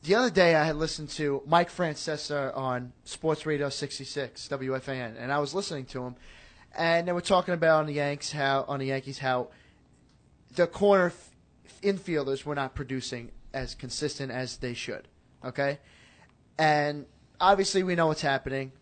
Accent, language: American, English